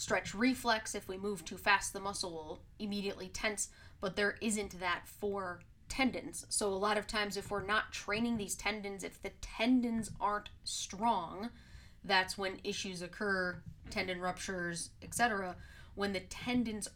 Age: 20-39